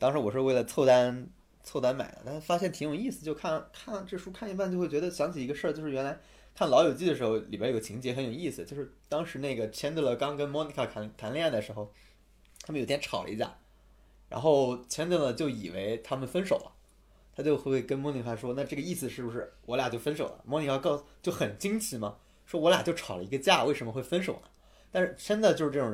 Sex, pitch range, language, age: male, 115-160 Hz, Chinese, 20-39